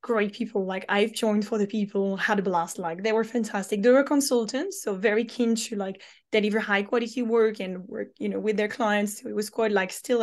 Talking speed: 230 wpm